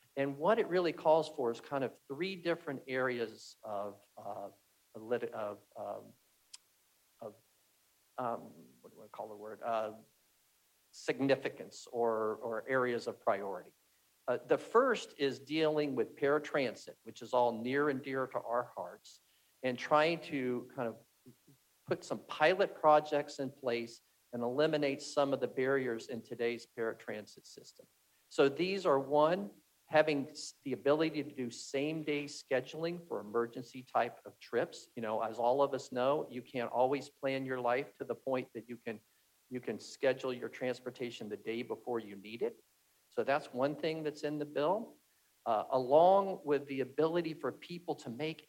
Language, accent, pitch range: English, American, 120-150 Hz